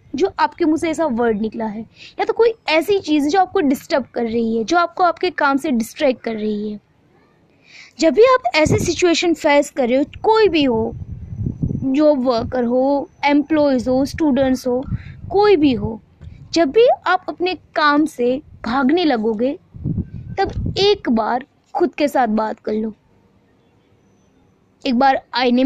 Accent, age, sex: native, 20-39, female